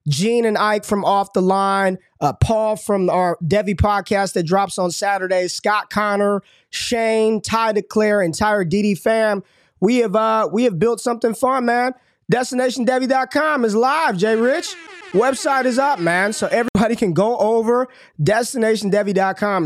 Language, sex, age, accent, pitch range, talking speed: English, male, 20-39, American, 185-225 Hz, 150 wpm